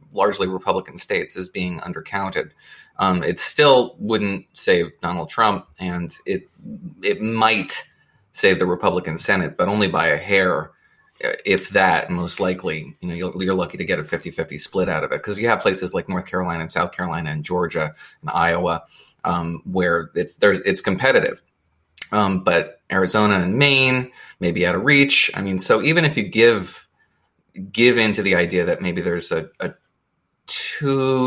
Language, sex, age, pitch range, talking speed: English, male, 30-49, 90-110 Hz, 175 wpm